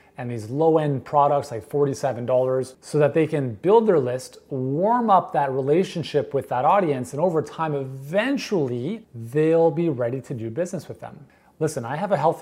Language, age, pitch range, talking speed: English, 30-49, 125-160 Hz, 180 wpm